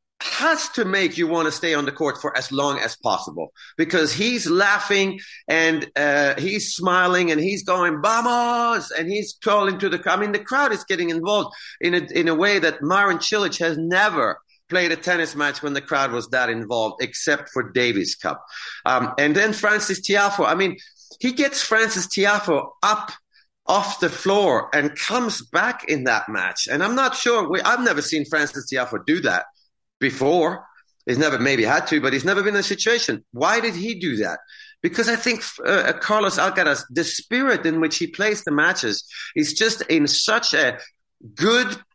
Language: English